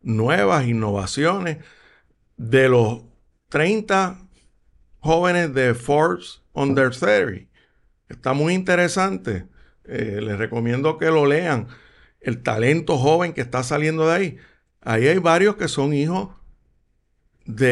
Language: Spanish